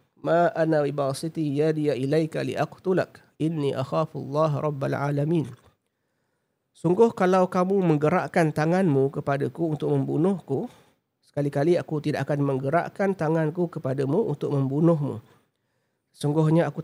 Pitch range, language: 135-165 Hz, Malay